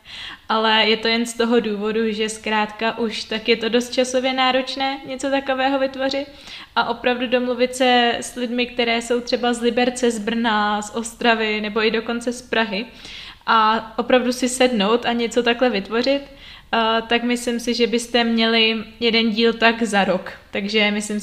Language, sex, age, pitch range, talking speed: Czech, female, 20-39, 225-245 Hz, 170 wpm